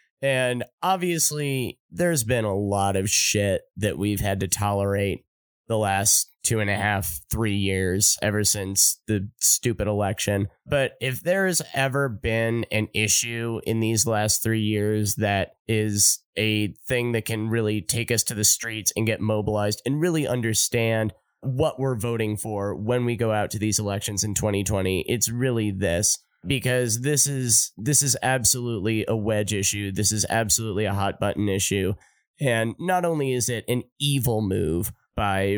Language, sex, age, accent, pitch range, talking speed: English, male, 20-39, American, 105-120 Hz, 160 wpm